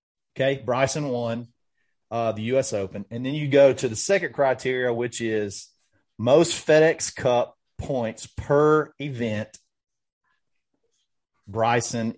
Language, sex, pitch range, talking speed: English, male, 115-145 Hz, 120 wpm